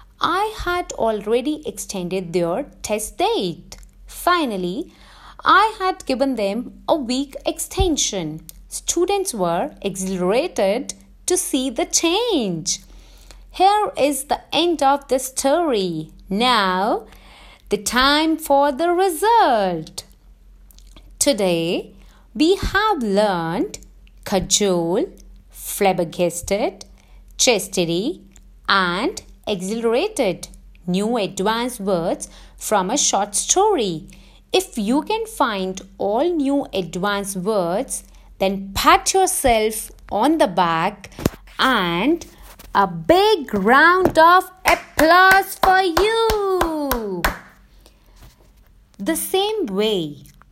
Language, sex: English, female